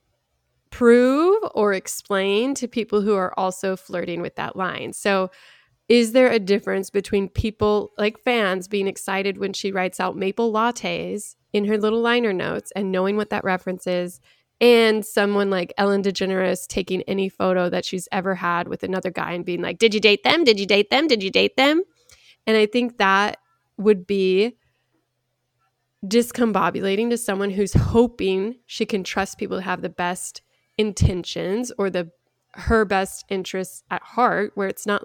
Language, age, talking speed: English, 20-39, 170 wpm